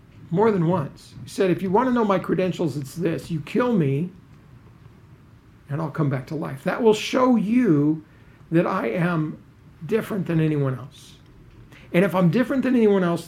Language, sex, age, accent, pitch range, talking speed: English, male, 50-69, American, 145-205 Hz, 185 wpm